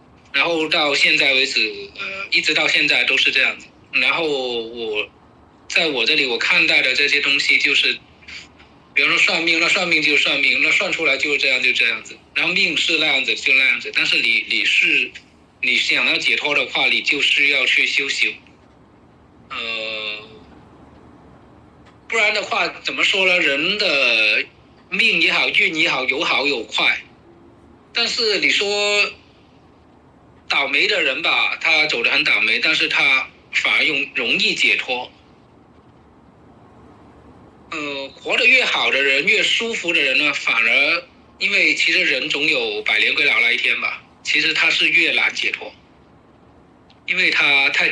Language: Chinese